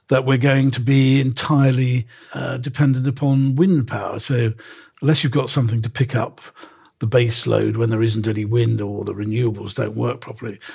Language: English